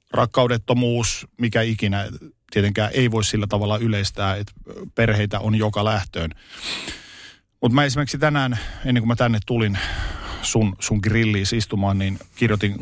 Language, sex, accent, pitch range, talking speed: Finnish, male, native, 95-115 Hz, 135 wpm